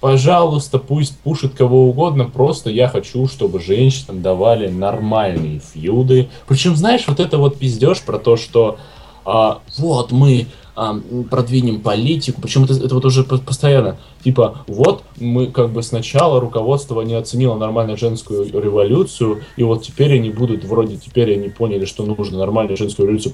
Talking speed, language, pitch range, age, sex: 155 wpm, Russian, 95-130 Hz, 20-39, male